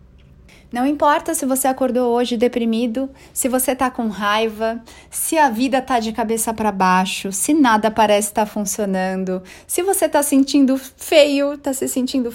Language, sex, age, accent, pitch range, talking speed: Portuguese, female, 30-49, Brazilian, 200-265 Hz, 165 wpm